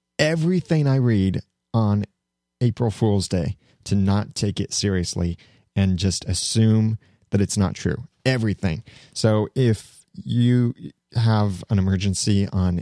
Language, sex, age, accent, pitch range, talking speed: English, male, 30-49, American, 95-130 Hz, 125 wpm